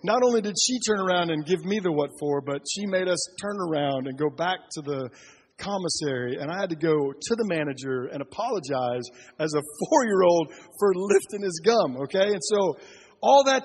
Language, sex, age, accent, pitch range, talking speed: English, male, 50-69, American, 150-210 Hz, 200 wpm